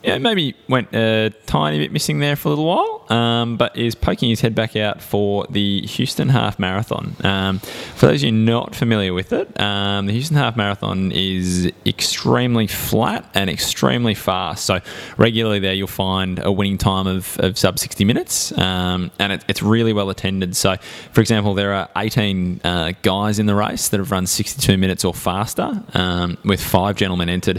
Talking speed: 190 wpm